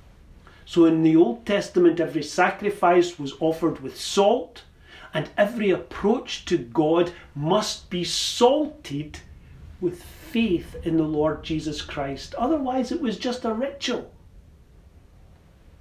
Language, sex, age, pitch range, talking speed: English, male, 40-59, 145-195 Hz, 120 wpm